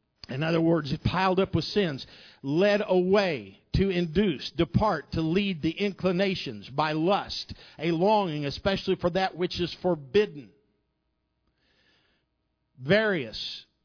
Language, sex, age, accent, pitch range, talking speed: English, male, 50-69, American, 155-200 Hz, 115 wpm